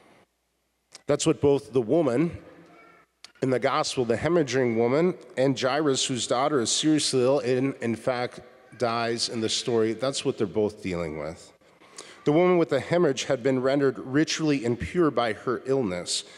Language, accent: English, American